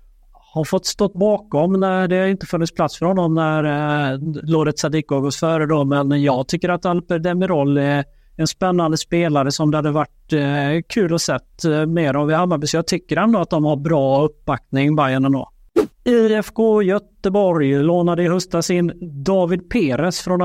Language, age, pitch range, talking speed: Swedish, 30-49, 145-175 Hz, 175 wpm